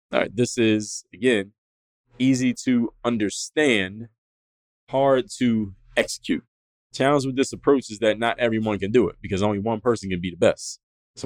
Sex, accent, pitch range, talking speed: male, American, 100-120 Hz, 165 wpm